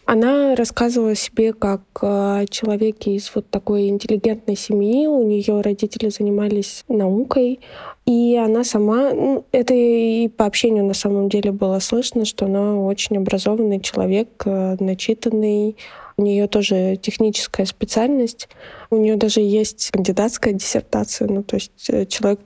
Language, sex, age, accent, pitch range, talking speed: Russian, female, 20-39, native, 195-225 Hz, 130 wpm